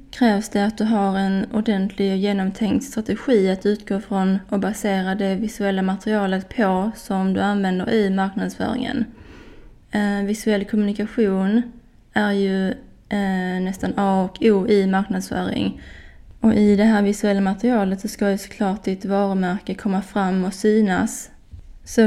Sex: female